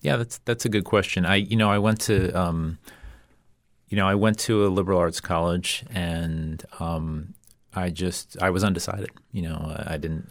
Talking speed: 190 wpm